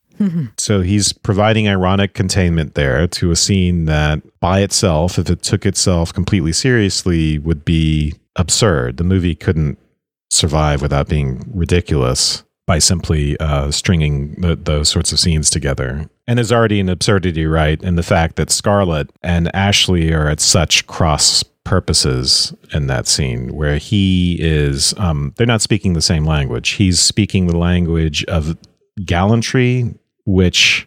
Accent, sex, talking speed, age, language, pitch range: American, male, 150 wpm, 40-59, English, 80-100 Hz